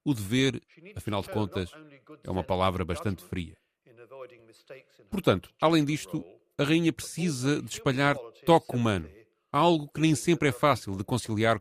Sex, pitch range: male, 115-155 Hz